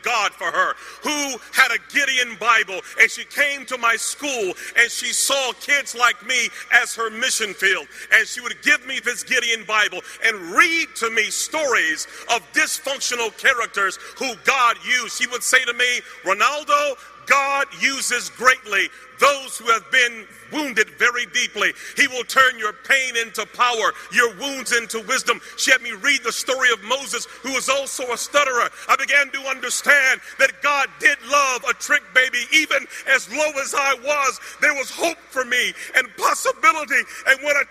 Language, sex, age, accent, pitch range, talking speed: English, male, 40-59, American, 245-315 Hz, 175 wpm